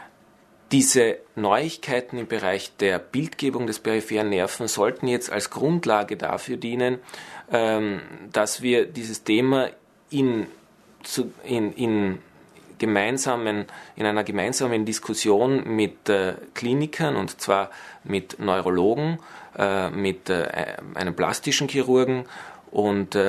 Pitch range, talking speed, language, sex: 100-125 Hz, 100 wpm, German, male